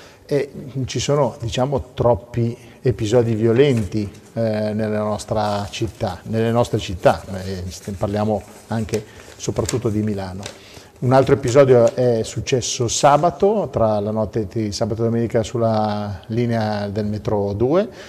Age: 40-59